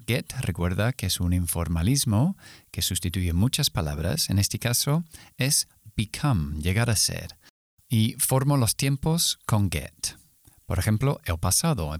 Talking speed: 145 wpm